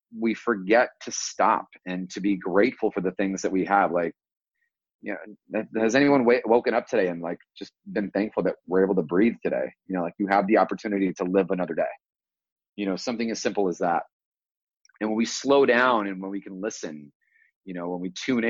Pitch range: 90-110 Hz